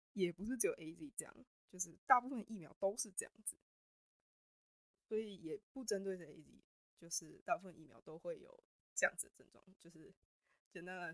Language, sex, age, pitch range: Chinese, female, 20-39, 175-245 Hz